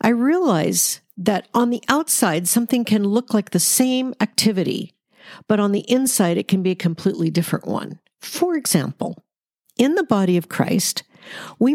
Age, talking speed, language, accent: 50-69, 165 wpm, English, American